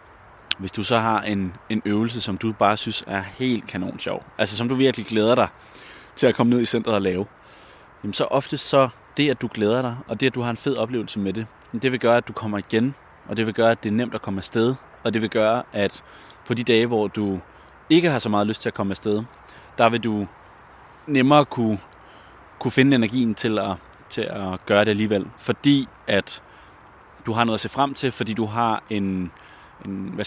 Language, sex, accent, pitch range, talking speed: Danish, male, native, 100-120 Hz, 230 wpm